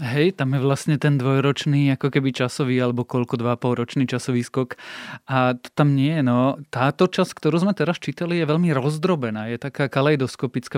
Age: 20-39